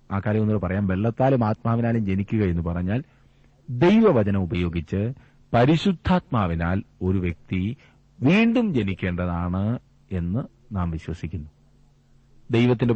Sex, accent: male, native